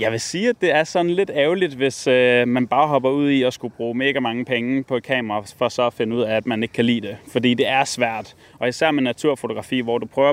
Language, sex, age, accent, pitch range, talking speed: Danish, male, 20-39, native, 110-130 Hz, 280 wpm